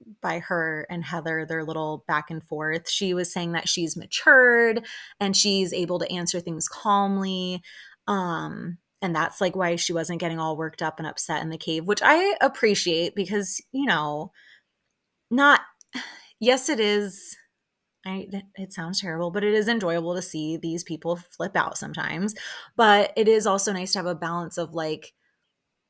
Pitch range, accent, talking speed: 165-195 Hz, American, 170 wpm